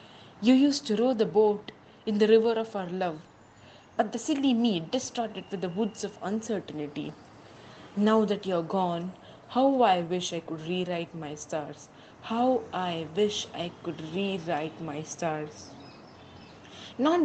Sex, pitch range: female, 180-245 Hz